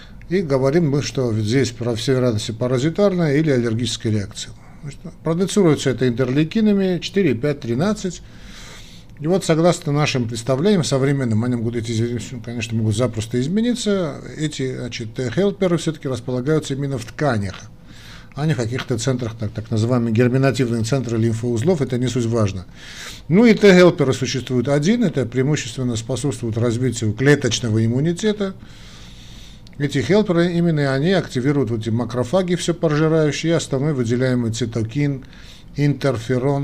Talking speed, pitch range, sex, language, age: 130 wpm, 120-155 Hz, male, Russian, 50-69